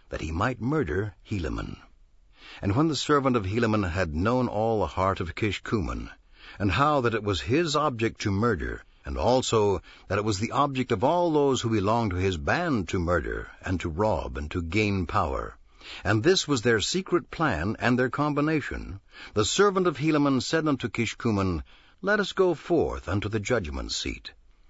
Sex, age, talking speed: male, 60-79, 180 wpm